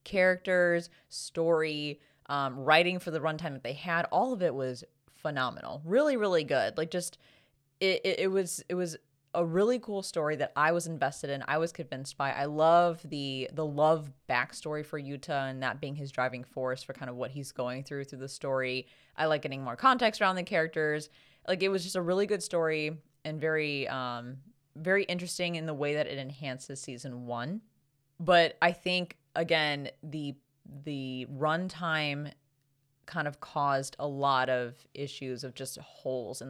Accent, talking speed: American, 180 wpm